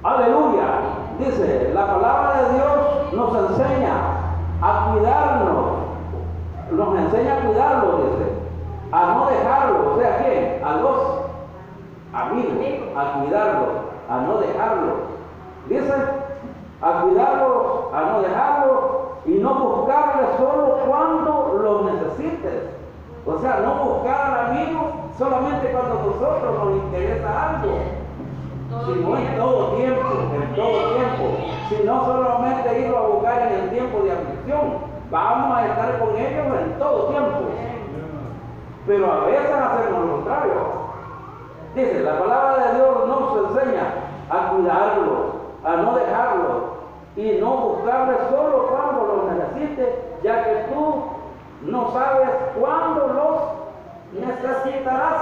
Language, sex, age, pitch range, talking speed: Spanish, male, 50-69, 245-315 Hz, 125 wpm